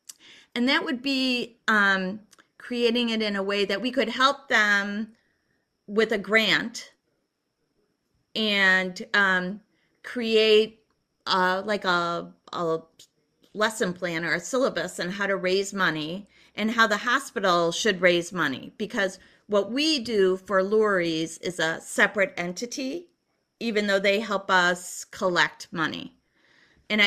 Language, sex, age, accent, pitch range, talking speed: English, female, 30-49, American, 185-235 Hz, 130 wpm